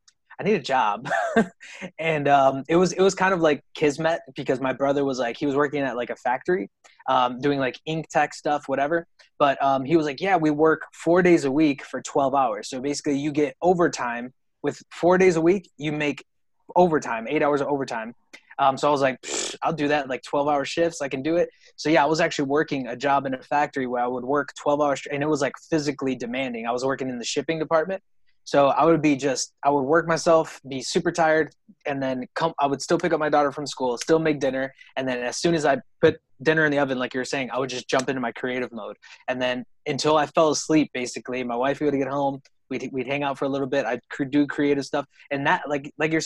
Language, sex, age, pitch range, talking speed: English, male, 20-39, 135-160 Hz, 245 wpm